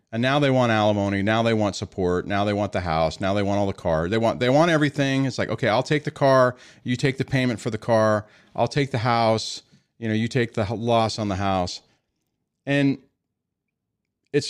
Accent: American